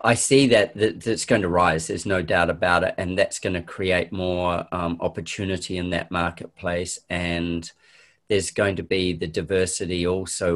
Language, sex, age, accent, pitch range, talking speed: English, male, 40-59, Australian, 85-100 Hz, 180 wpm